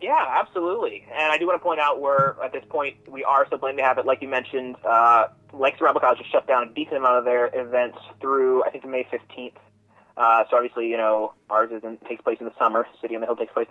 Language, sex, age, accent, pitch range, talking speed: English, male, 20-39, American, 120-145 Hz, 260 wpm